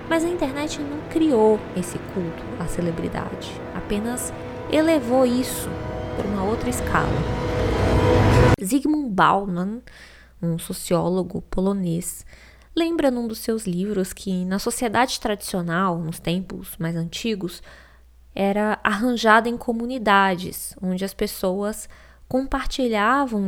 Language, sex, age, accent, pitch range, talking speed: Portuguese, female, 20-39, Brazilian, 175-245 Hz, 105 wpm